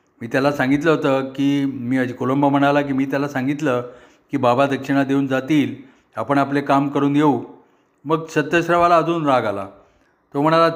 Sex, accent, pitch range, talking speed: male, native, 125-150 Hz, 160 wpm